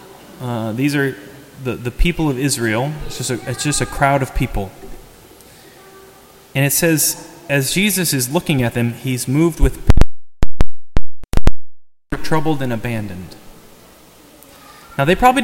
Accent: American